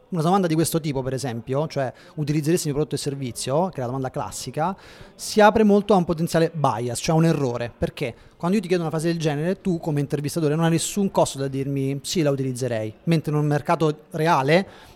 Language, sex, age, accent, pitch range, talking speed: Italian, male, 30-49, native, 135-170 Hz, 225 wpm